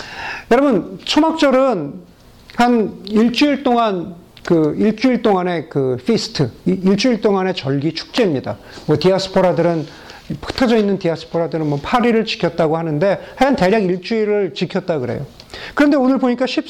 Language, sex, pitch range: Korean, male, 175-250 Hz